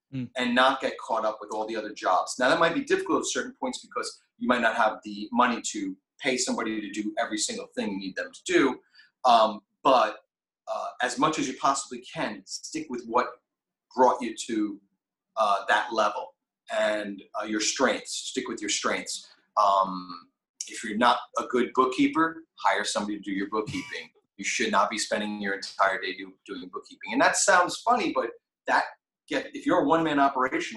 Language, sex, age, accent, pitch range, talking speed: English, male, 30-49, American, 105-165 Hz, 195 wpm